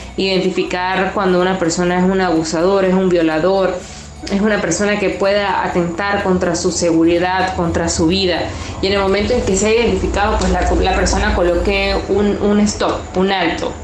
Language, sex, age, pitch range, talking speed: Spanish, female, 20-39, 170-200 Hz, 180 wpm